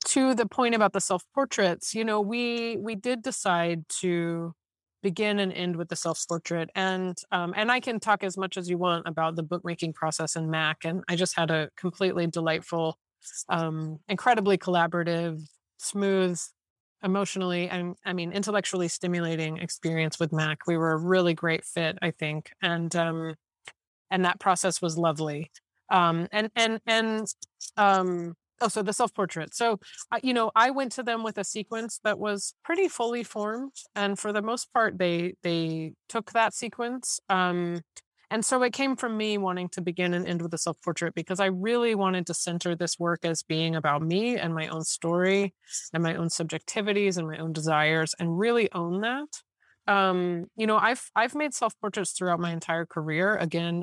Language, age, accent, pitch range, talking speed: English, 30-49, American, 165-215 Hz, 180 wpm